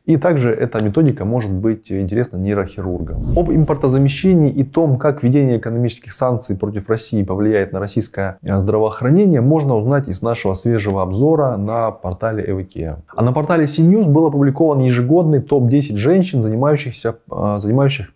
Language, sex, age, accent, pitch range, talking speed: Russian, male, 20-39, native, 100-135 Hz, 135 wpm